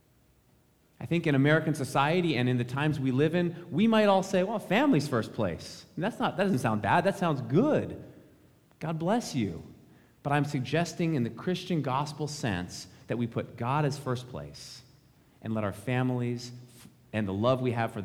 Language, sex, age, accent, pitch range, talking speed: English, male, 30-49, American, 110-145 Hz, 190 wpm